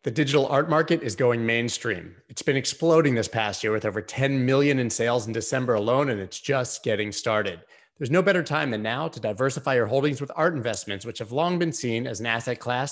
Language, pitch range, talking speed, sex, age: English, 115-150 Hz, 230 wpm, male, 30-49